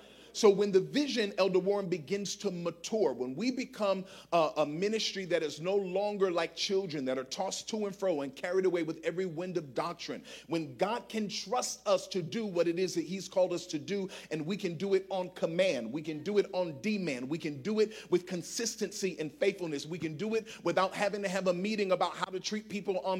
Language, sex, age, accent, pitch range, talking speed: English, male, 50-69, American, 175-205 Hz, 230 wpm